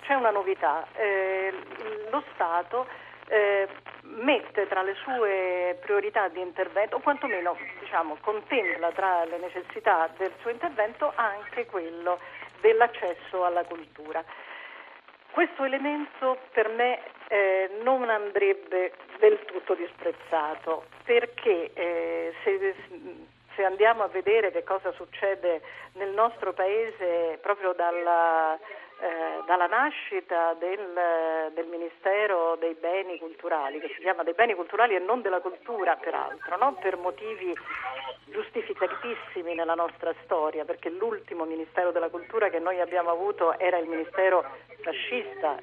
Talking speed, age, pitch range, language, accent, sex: 120 wpm, 50-69, 170-240 Hz, Italian, native, female